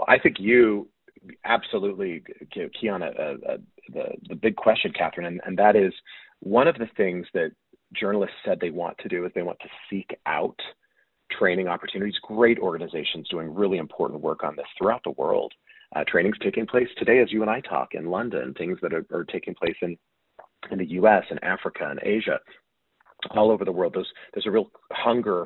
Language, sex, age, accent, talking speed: English, male, 40-59, American, 195 wpm